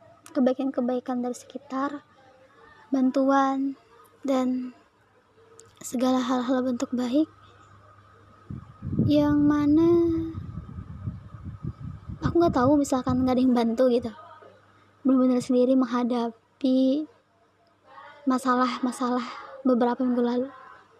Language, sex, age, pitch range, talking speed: Indonesian, male, 20-39, 245-290 Hz, 80 wpm